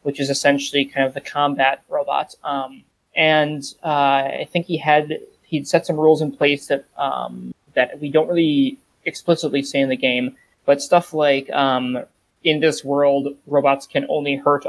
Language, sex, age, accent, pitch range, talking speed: English, male, 20-39, American, 135-155 Hz, 175 wpm